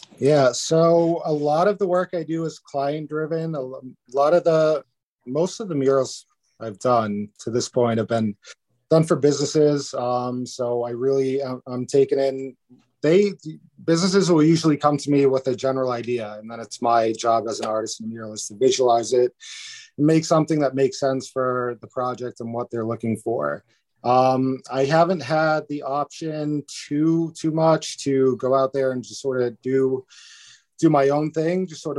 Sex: male